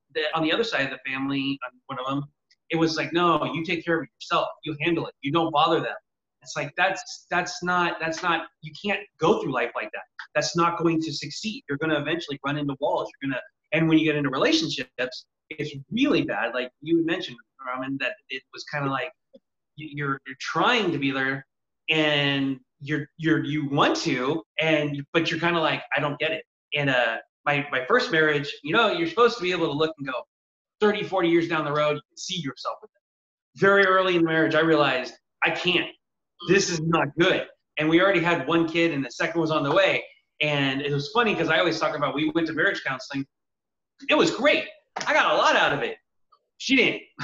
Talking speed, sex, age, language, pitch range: 225 wpm, male, 30-49, English, 145-190 Hz